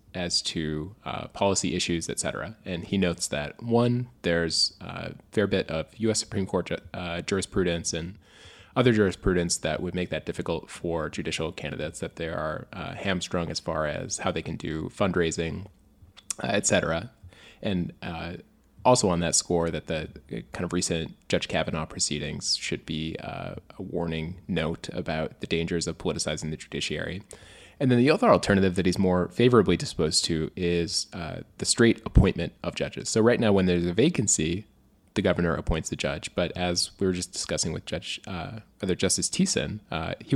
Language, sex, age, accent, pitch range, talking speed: English, male, 20-39, American, 85-100 Hz, 180 wpm